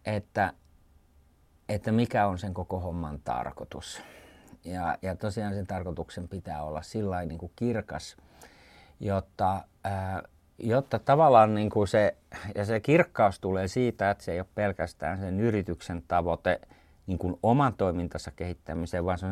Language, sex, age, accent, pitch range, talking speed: Finnish, male, 50-69, native, 85-110 Hz, 145 wpm